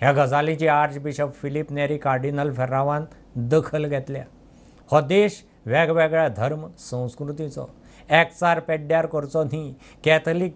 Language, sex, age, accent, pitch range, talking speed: English, male, 60-79, Indian, 135-160 Hz, 115 wpm